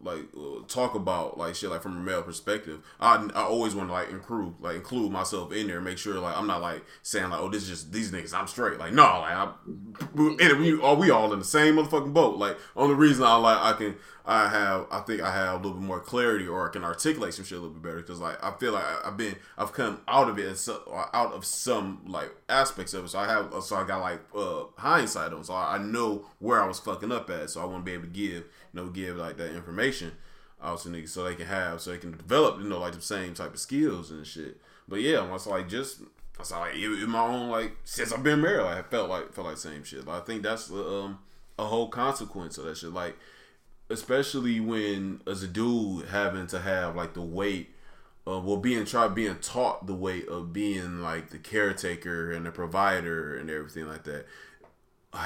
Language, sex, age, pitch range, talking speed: English, male, 20-39, 85-110 Hz, 250 wpm